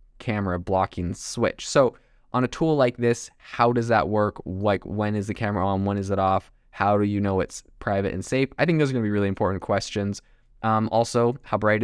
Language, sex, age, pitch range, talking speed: English, male, 20-39, 100-120 Hz, 225 wpm